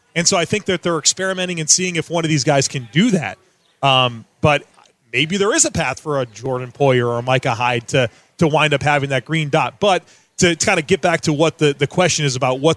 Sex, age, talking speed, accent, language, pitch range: male, 30-49, 260 wpm, American, English, 145-180 Hz